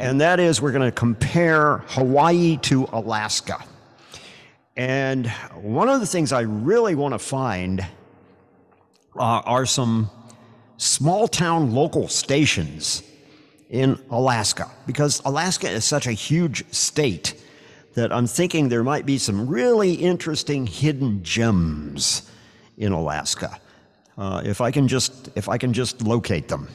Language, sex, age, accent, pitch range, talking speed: English, male, 50-69, American, 105-140 Hz, 135 wpm